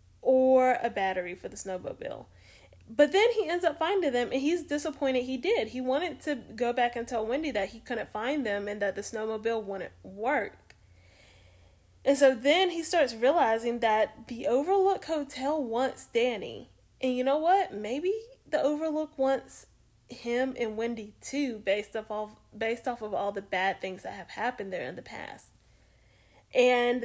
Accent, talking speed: American, 170 wpm